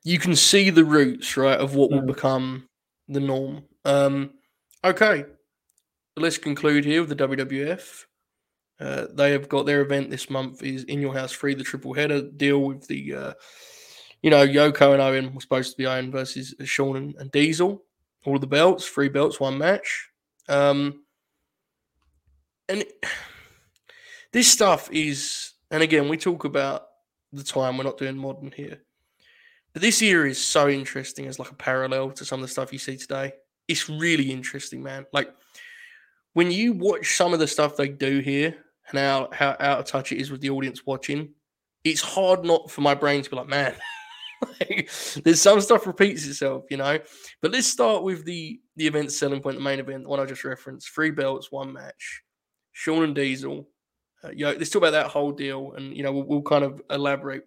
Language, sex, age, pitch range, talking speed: English, male, 20-39, 135-160 Hz, 190 wpm